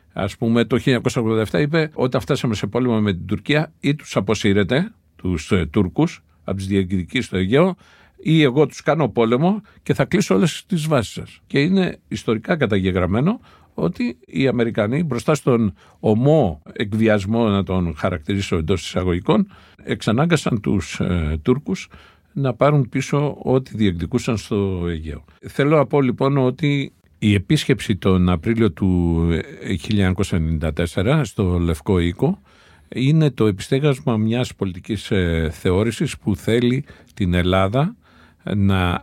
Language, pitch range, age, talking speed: Greek, 95-135 Hz, 50-69, 130 wpm